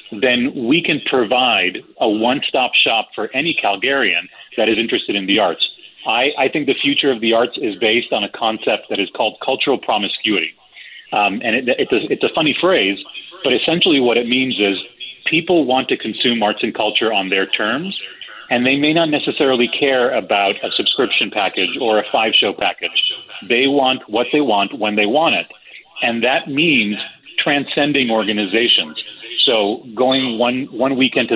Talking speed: 175 wpm